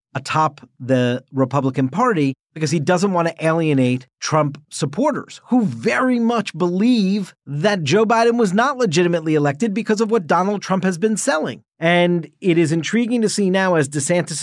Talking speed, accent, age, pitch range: 165 wpm, American, 40-59, 140-180 Hz